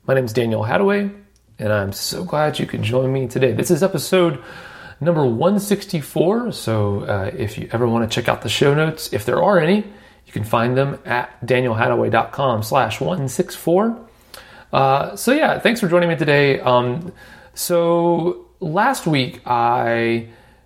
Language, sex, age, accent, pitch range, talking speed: English, male, 40-59, American, 110-170 Hz, 160 wpm